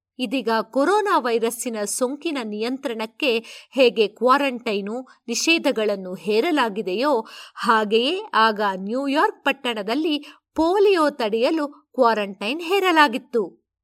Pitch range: 230-325 Hz